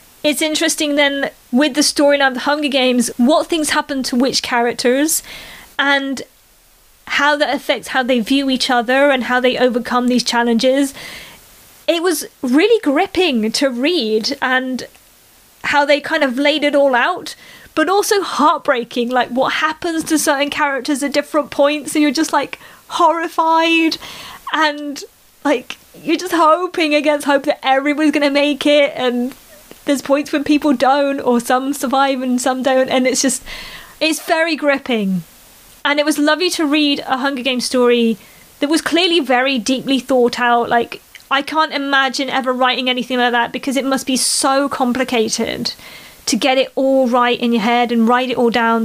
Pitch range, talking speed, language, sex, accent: 250-295 Hz, 170 wpm, English, female, British